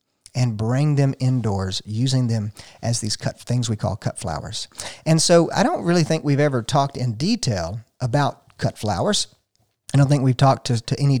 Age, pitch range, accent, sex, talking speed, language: 40-59, 120-160 Hz, American, male, 195 wpm, English